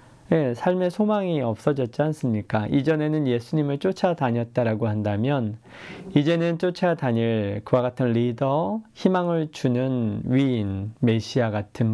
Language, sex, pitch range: Korean, male, 120-150 Hz